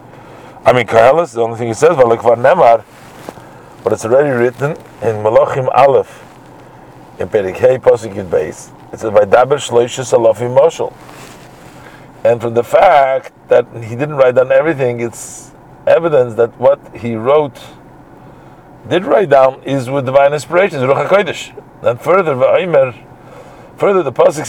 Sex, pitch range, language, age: male, 115-150 Hz, English, 50-69